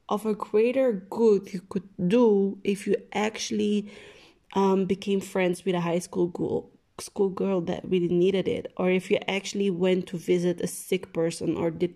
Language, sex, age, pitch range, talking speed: English, female, 20-39, 180-205 Hz, 175 wpm